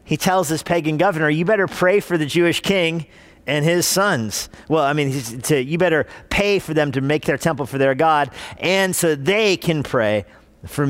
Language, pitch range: English, 130-170 Hz